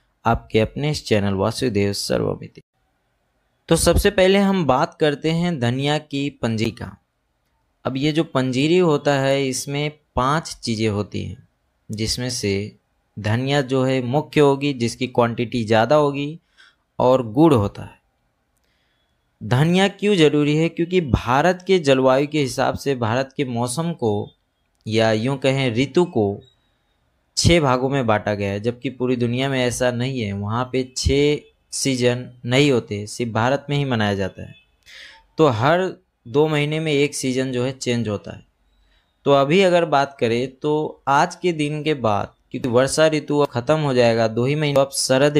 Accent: native